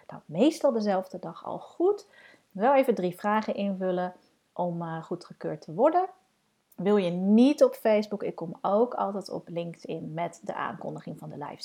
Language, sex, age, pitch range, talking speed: Dutch, female, 40-59, 175-235 Hz, 175 wpm